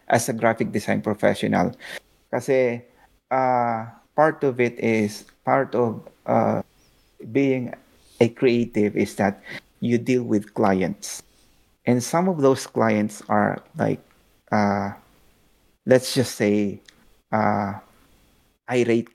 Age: 30-49